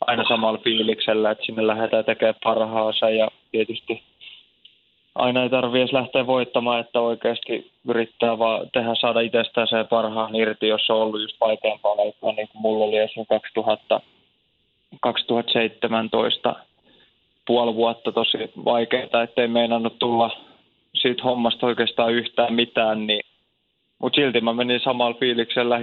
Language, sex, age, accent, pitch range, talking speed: Finnish, male, 20-39, native, 110-120 Hz, 130 wpm